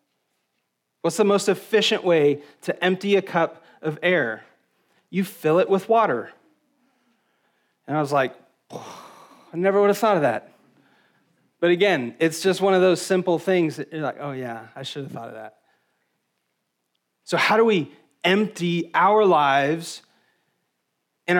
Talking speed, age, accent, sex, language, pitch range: 155 wpm, 30-49, American, male, English, 140-170 Hz